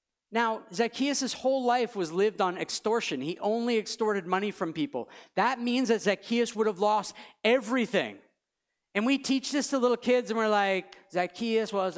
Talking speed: 170 wpm